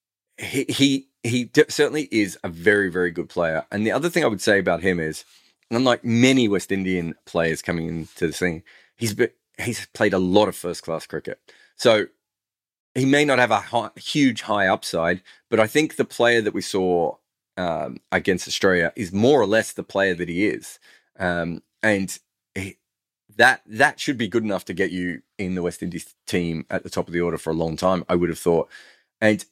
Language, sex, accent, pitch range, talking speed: English, male, Australian, 90-115 Hz, 205 wpm